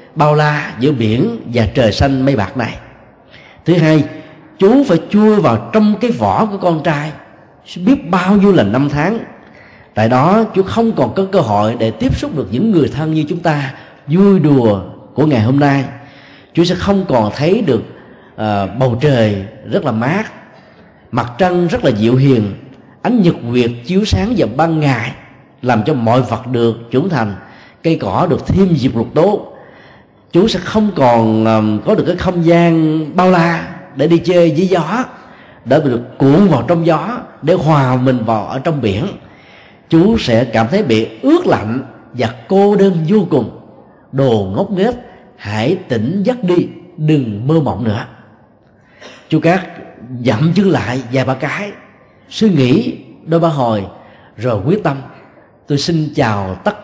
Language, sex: Vietnamese, male